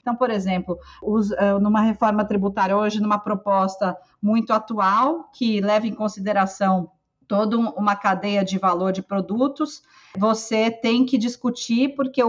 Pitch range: 205-245 Hz